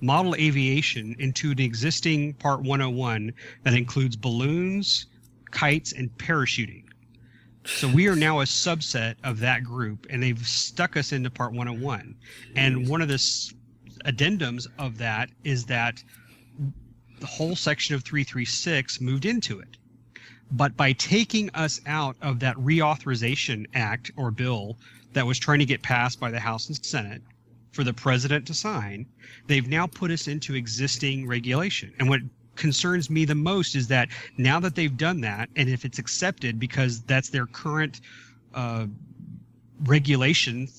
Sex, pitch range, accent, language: male, 120-150 Hz, American, English